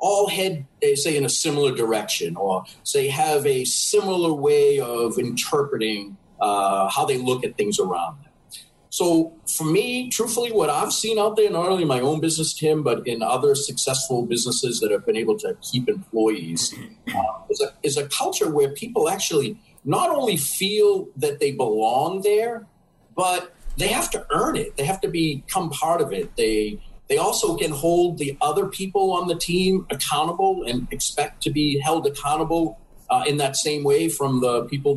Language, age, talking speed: English, 40-59, 185 wpm